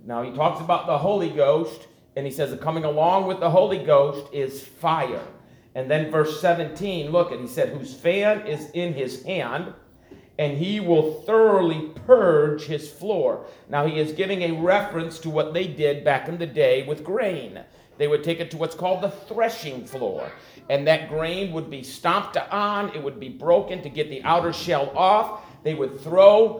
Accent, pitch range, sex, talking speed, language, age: American, 145-185 Hz, male, 195 wpm, English, 50-69